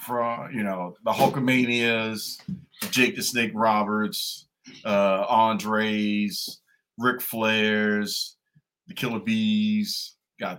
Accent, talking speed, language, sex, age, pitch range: American, 95 wpm, English, male, 40-59, 100-125 Hz